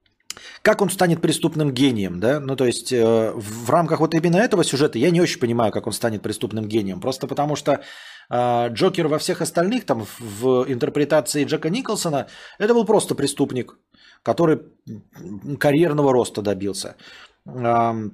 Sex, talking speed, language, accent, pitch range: male, 135 wpm, Russian, native, 125-185 Hz